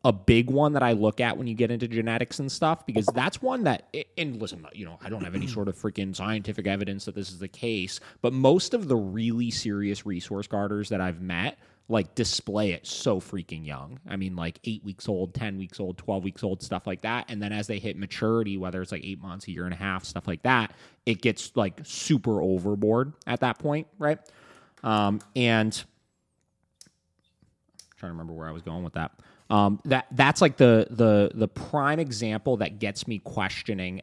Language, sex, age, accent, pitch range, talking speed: English, male, 20-39, American, 95-120 Hz, 215 wpm